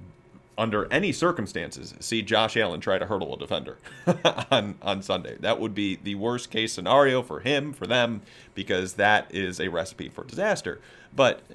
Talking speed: 170 wpm